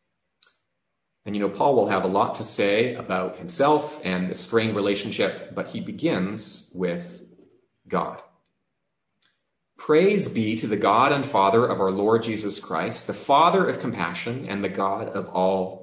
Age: 30-49